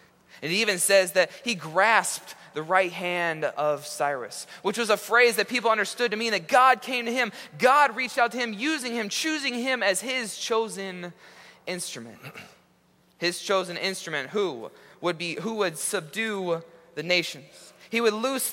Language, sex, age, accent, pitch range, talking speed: English, male, 20-39, American, 160-240 Hz, 170 wpm